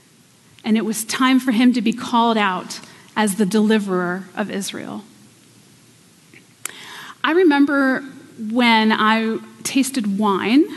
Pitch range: 215-260 Hz